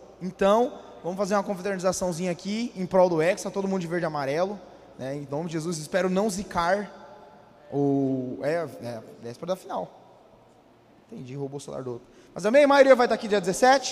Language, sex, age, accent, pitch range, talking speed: Portuguese, male, 20-39, Brazilian, 190-240 Hz, 195 wpm